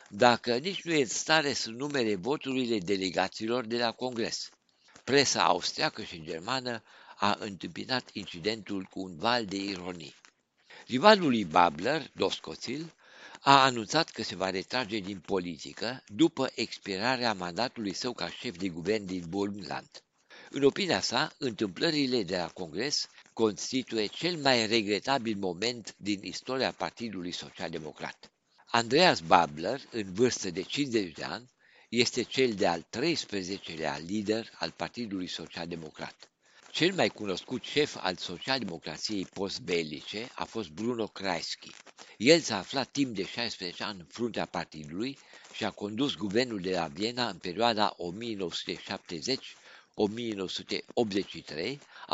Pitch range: 95-125 Hz